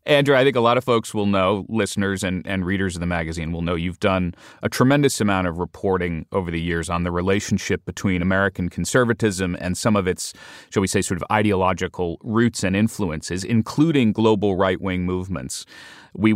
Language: English